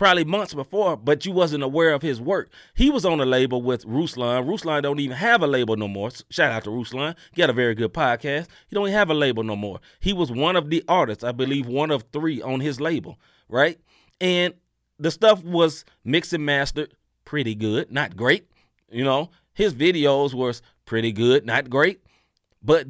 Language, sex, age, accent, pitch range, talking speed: English, male, 30-49, American, 130-170 Hz, 205 wpm